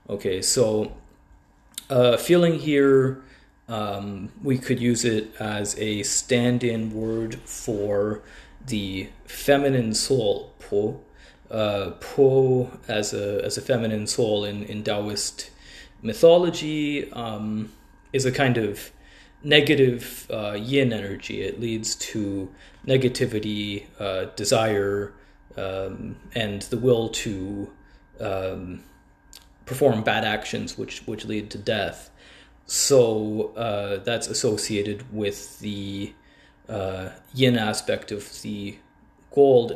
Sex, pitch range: male, 100-130 Hz